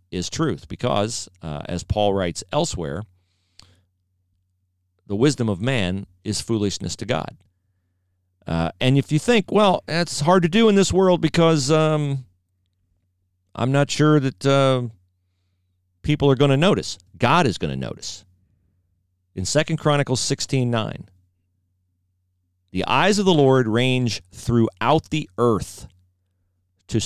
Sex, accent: male, American